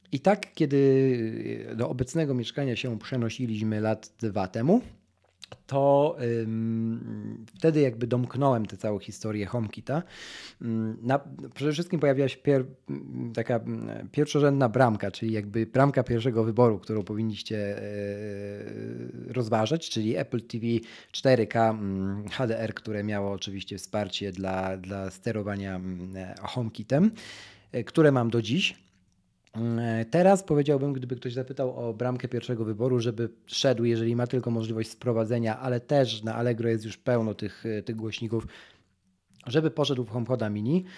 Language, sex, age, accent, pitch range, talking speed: Polish, male, 40-59, native, 110-135 Hz, 130 wpm